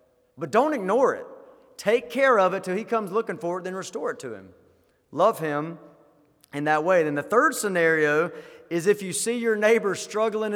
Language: English